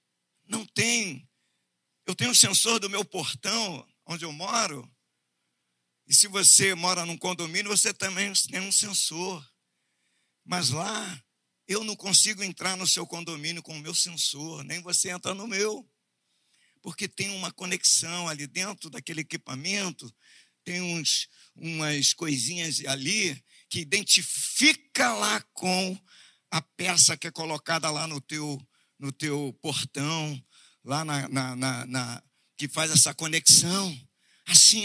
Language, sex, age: Portuguese, male, 50-69